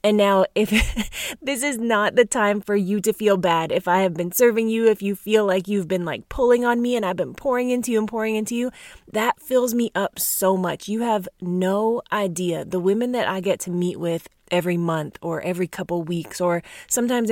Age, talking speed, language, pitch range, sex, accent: 20-39, 225 wpm, English, 170-220 Hz, female, American